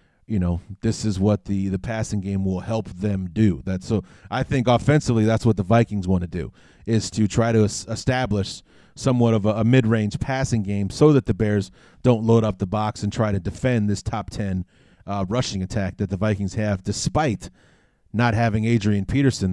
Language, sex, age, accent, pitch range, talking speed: English, male, 30-49, American, 95-115 Hz, 195 wpm